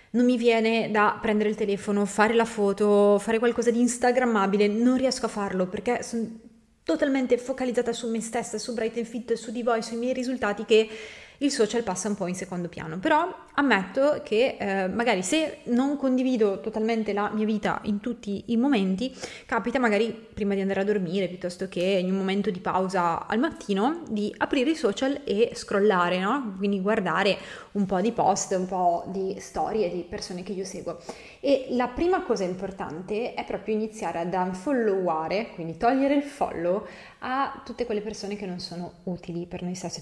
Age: 20-39